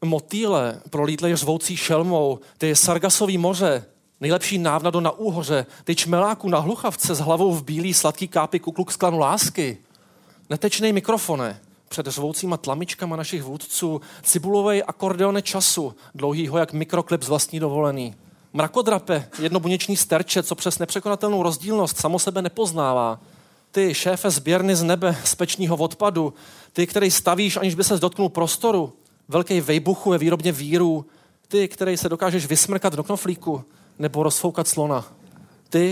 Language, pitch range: Czech, 150-185 Hz